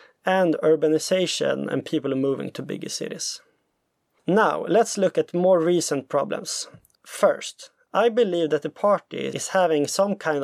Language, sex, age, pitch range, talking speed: English, male, 30-49, 150-225 Hz, 145 wpm